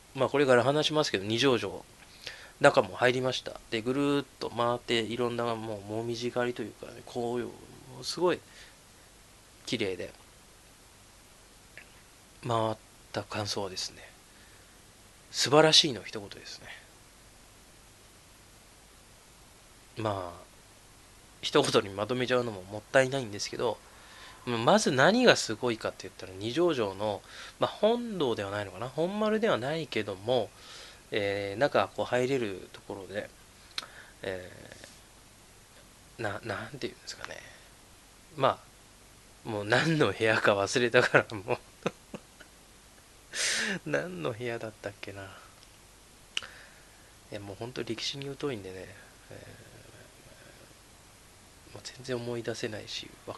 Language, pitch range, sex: Japanese, 100-125 Hz, male